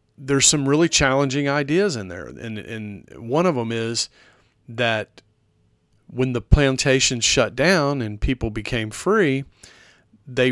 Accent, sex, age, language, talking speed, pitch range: American, male, 40-59, English, 135 wpm, 110-135 Hz